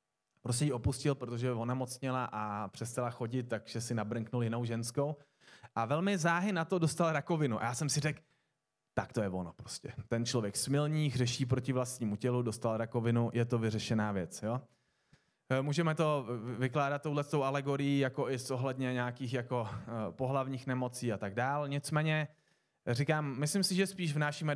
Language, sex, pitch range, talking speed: Czech, male, 120-145 Hz, 165 wpm